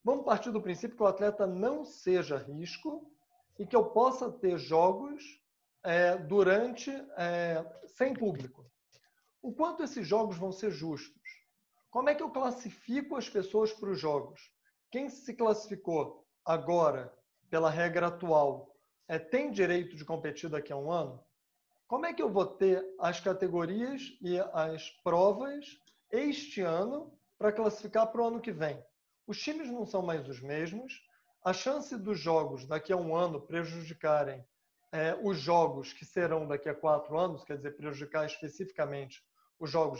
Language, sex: Portuguese, male